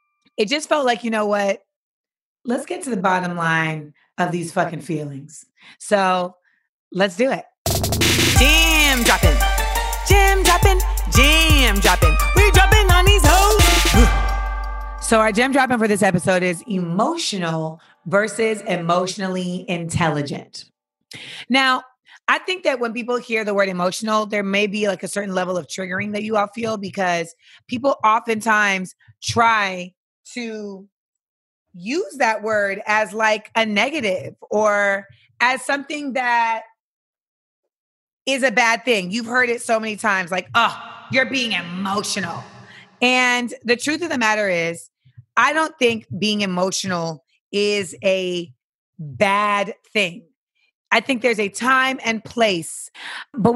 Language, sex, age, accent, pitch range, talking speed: English, female, 30-49, American, 185-245 Hz, 135 wpm